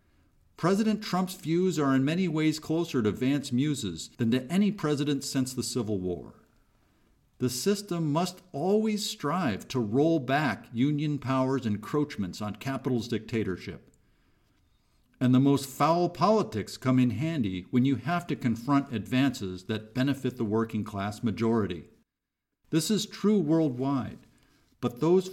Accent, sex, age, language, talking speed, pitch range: American, male, 50-69, English, 140 wpm, 115-160 Hz